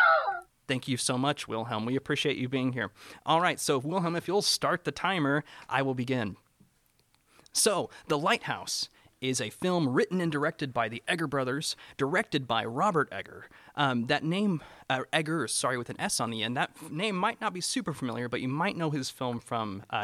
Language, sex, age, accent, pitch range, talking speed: English, male, 30-49, American, 120-150 Hz, 200 wpm